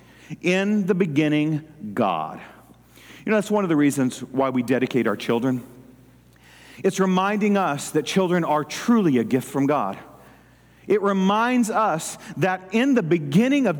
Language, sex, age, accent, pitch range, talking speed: English, male, 50-69, American, 155-215 Hz, 150 wpm